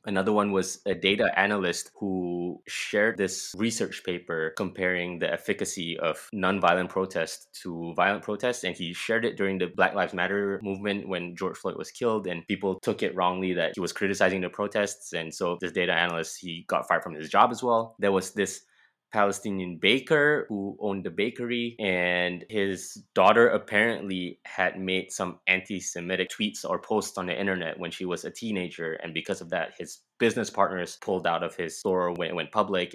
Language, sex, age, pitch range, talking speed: English, male, 20-39, 90-105 Hz, 190 wpm